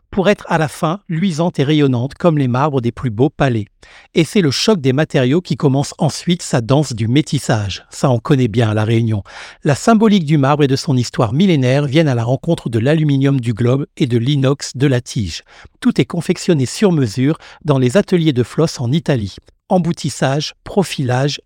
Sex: male